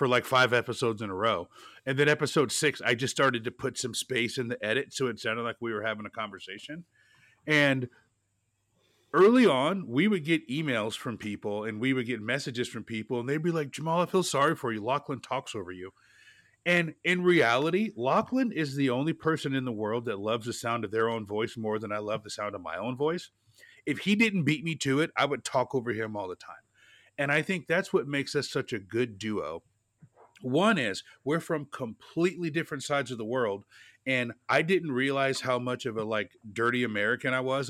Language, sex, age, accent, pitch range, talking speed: English, male, 30-49, American, 115-150 Hz, 220 wpm